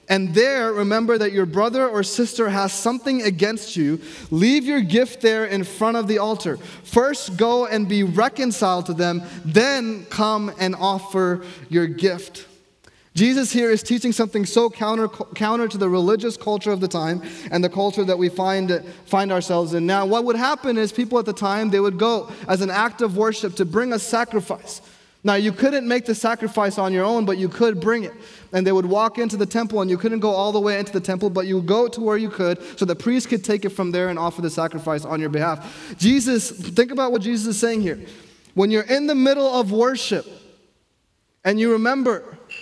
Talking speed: 215 wpm